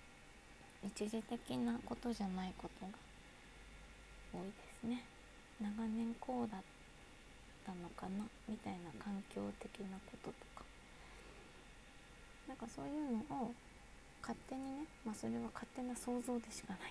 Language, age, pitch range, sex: Japanese, 20-39, 185-230 Hz, female